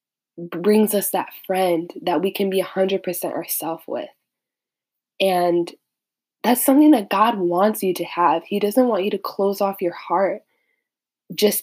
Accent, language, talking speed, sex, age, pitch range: American, English, 165 wpm, female, 20-39, 175-205 Hz